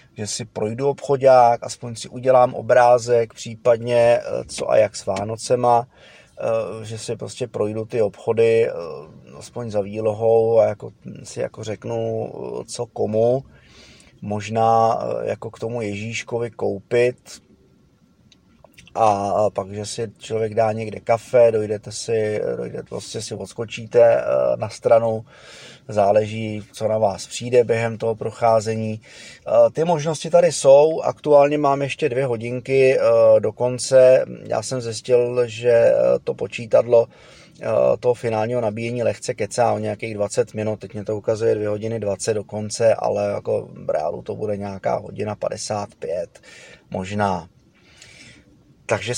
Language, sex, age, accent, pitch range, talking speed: Czech, male, 30-49, native, 110-125 Hz, 125 wpm